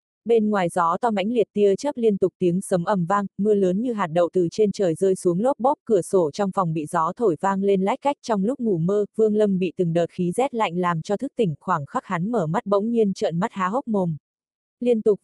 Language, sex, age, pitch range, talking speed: Vietnamese, female, 20-39, 180-220 Hz, 265 wpm